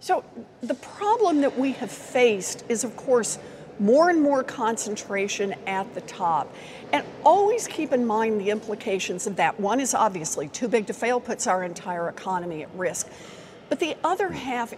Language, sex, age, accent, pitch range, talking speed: English, female, 50-69, American, 210-270 Hz, 175 wpm